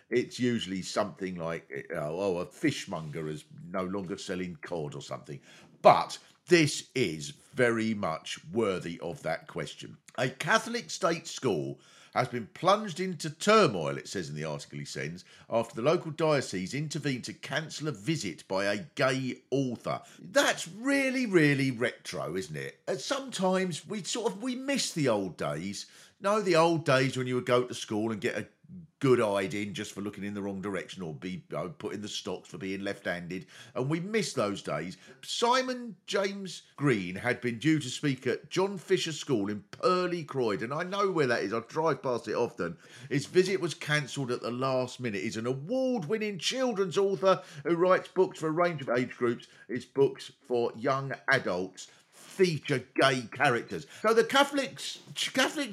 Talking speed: 180 wpm